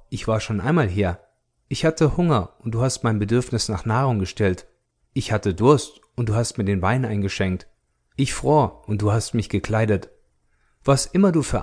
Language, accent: German, German